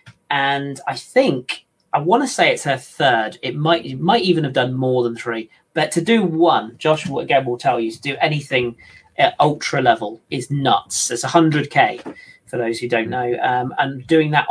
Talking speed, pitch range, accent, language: 200 wpm, 120-160 Hz, British, English